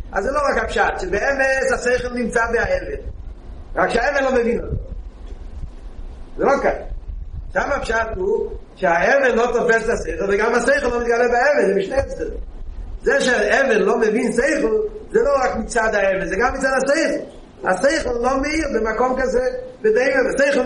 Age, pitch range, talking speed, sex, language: 30-49, 220-285 Hz, 145 wpm, male, Hebrew